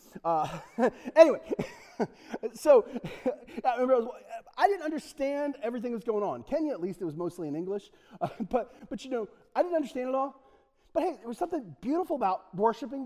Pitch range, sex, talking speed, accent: 155-265 Hz, male, 175 wpm, American